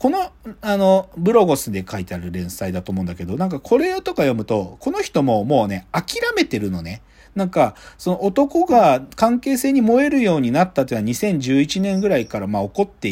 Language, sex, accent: Japanese, male, native